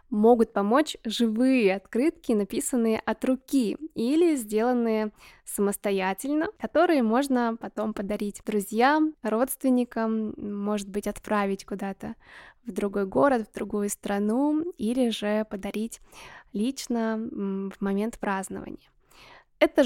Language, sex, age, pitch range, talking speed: Russian, female, 20-39, 205-245 Hz, 105 wpm